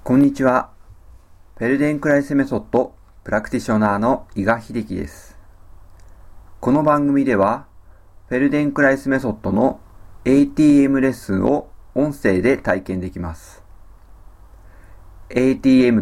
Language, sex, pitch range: Japanese, male, 90-120 Hz